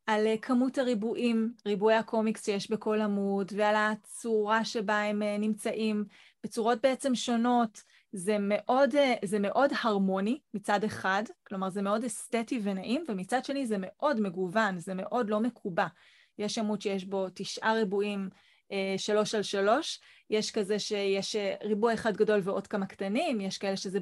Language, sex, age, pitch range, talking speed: Hebrew, female, 20-39, 200-245 Hz, 145 wpm